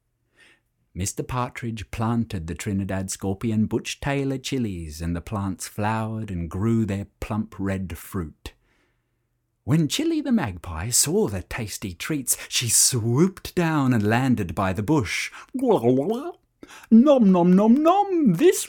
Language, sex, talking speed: English, male, 140 wpm